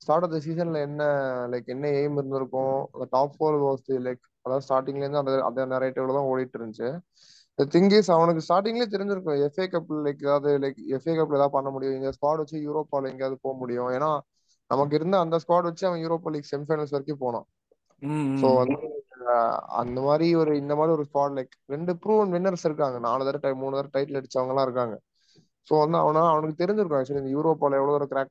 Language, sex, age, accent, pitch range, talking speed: Tamil, male, 20-39, native, 135-160 Hz, 175 wpm